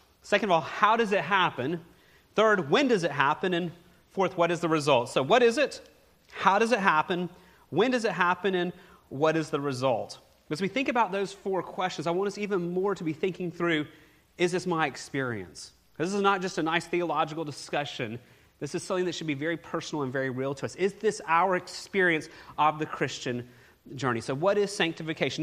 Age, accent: 30-49, American